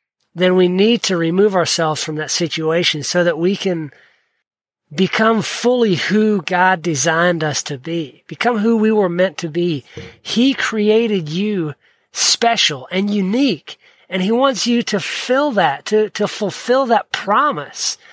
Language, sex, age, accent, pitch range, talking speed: English, male, 40-59, American, 170-225 Hz, 150 wpm